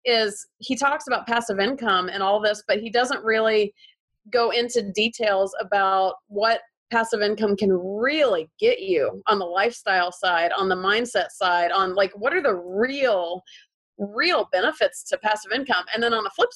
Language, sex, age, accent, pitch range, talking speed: English, female, 30-49, American, 200-245 Hz, 175 wpm